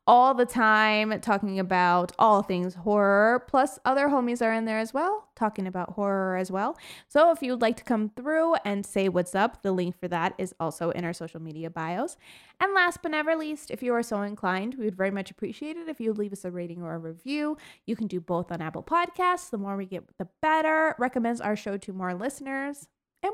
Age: 20-39